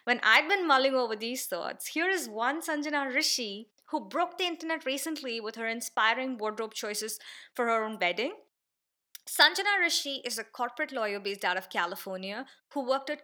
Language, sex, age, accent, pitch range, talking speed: English, female, 20-39, Indian, 215-290 Hz, 175 wpm